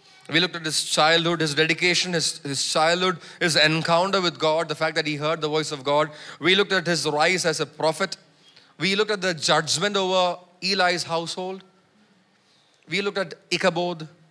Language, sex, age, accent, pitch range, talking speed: English, male, 30-49, Indian, 155-185 Hz, 180 wpm